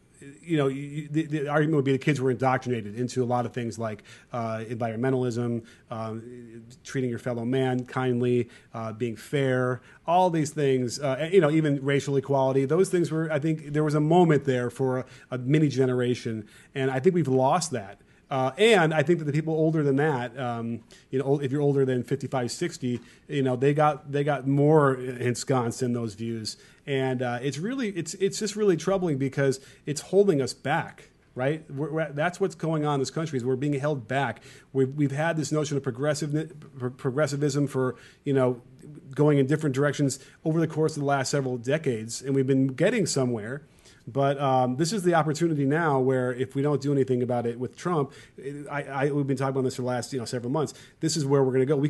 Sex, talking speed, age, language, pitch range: male, 215 wpm, 30-49, English, 125-150 Hz